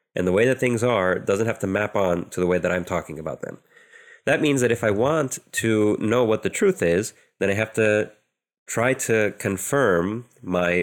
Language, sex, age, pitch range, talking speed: English, male, 30-49, 85-115 Hz, 215 wpm